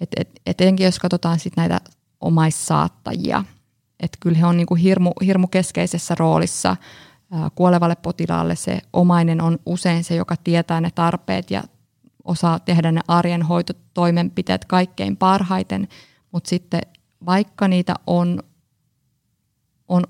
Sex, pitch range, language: female, 140-180 Hz, Finnish